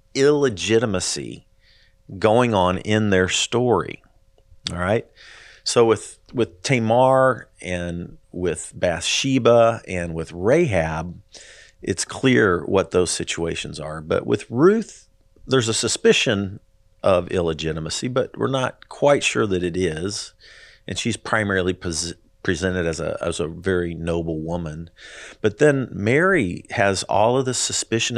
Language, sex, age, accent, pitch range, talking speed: English, male, 40-59, American, 90-115 Hz, 125 wpm